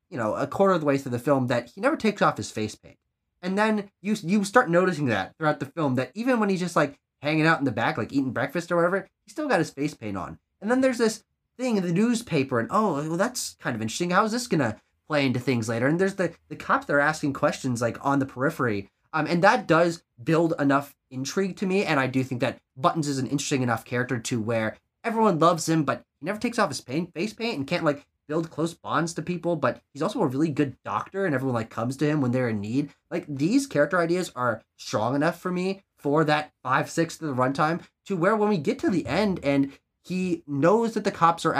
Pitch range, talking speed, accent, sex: 135-185 Hz, 255 wpm, American, male